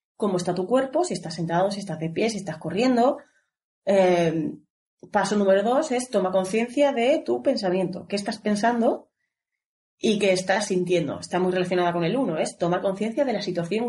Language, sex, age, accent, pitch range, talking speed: Spanish, female, 30-49, Spanish, 180-240 Hz, 190 wpm